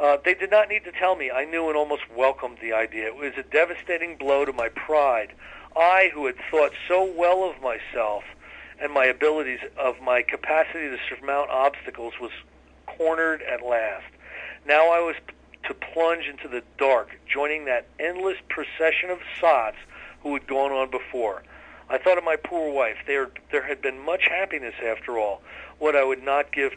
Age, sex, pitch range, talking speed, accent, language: 50-69, male, 130-170 Hz, 180 wpm, American, English